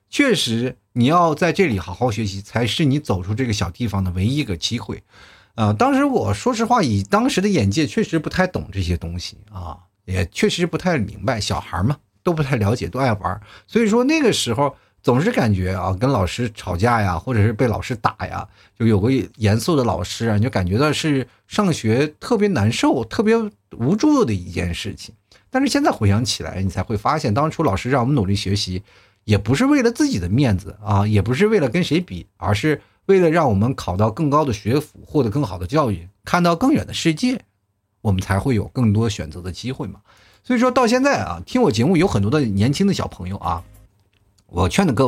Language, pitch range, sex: Chinese, 100-155 Hz, male